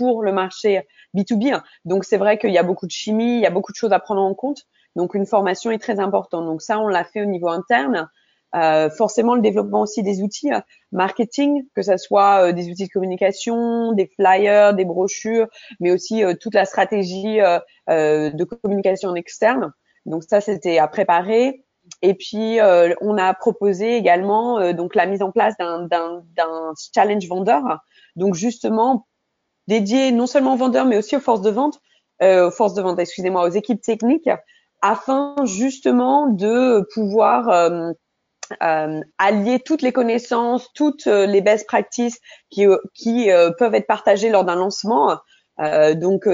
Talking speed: 180 wpm